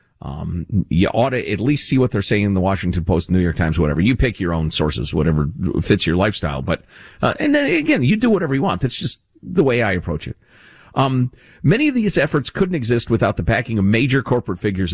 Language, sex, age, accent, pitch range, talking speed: English, male, 50-69, American, 90-135 Hz, 235 wpm